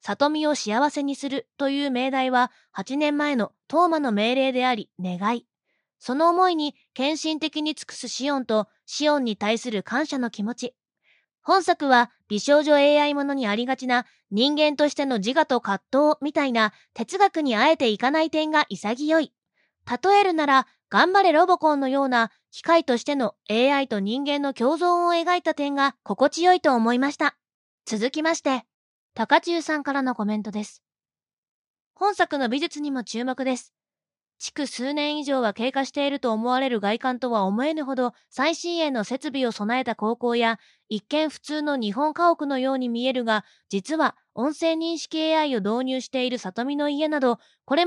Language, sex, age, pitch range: Japanese, female, 20-39, 240-300 Hz